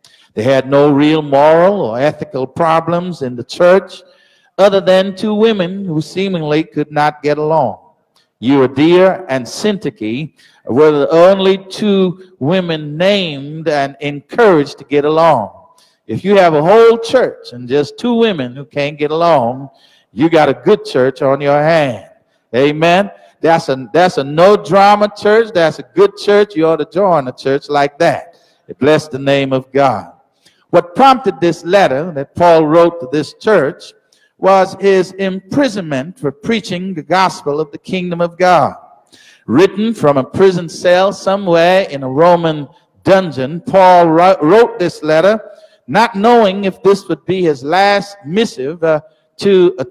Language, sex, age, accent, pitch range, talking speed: English, male, 60-79, American, 145-195 Hz, 155 wpm